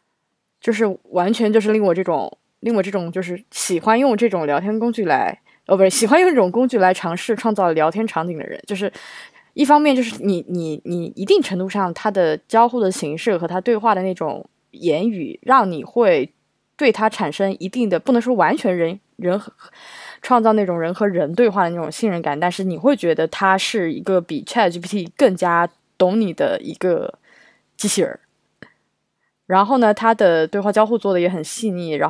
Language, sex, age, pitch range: Chinese, female, 20-39, 175-230 Hz